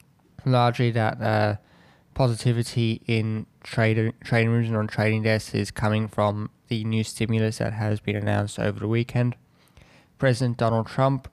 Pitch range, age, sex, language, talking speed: 105-120 Hz, 20-39, male, English, 150 wpm